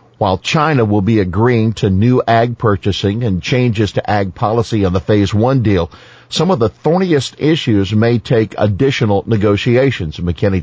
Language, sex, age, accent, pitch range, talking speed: English, male, 50-69, American, 100-125 Hz, 165 wpm